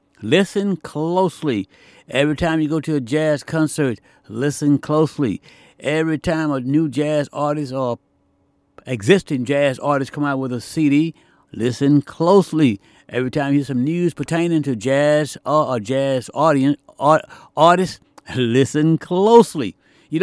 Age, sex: 60-79, male